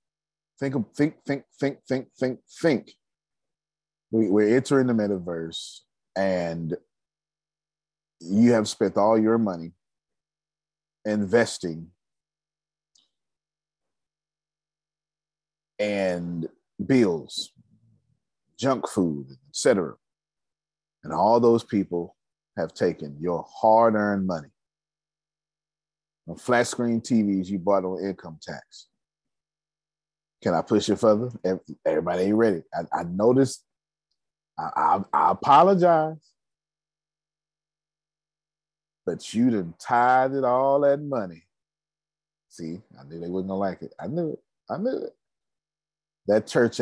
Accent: American